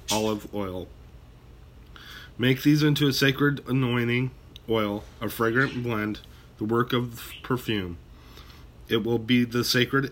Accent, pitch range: American, 90-120 Hz